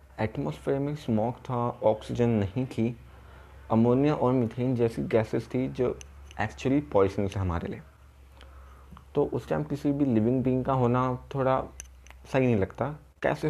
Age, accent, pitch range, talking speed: 20-39, native, 90-125 Hz, 145 wpm